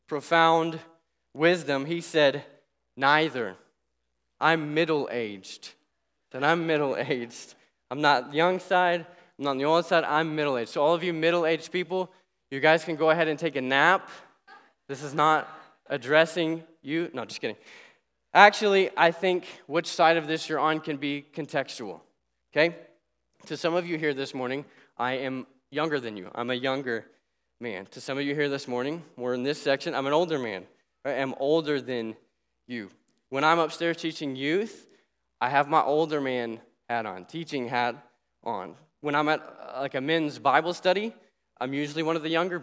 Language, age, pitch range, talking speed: English, 20-39, 135-165 Hz, 175 wpm